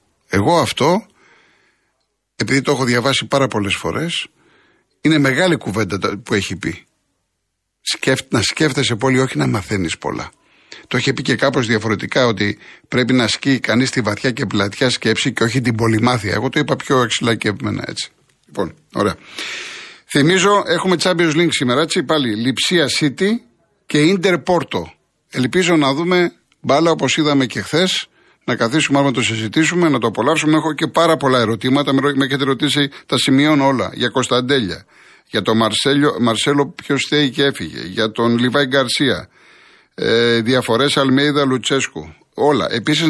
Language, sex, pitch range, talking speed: Greek, male, 115-150 Hz, 155 wpm